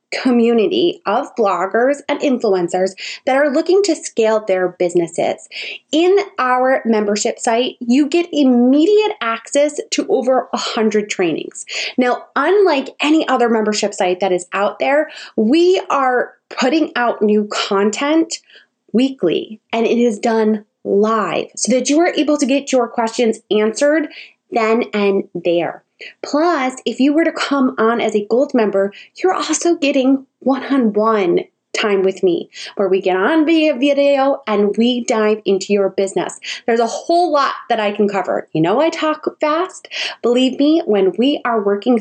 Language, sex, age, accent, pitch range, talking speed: English, female, 20-39, American, 210-290 Hz, 155 wpm